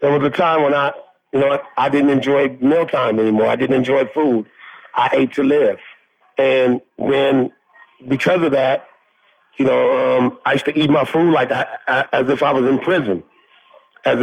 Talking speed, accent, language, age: 185 wpm, American, English, 50-69